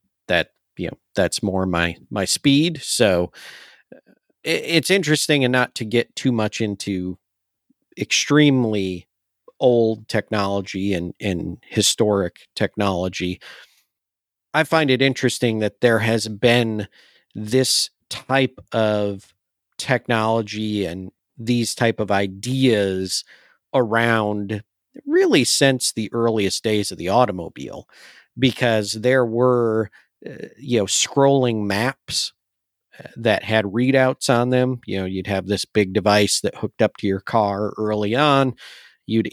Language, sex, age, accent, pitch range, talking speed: English, male, 50-69, American, 100-120 Hz, 120 wpm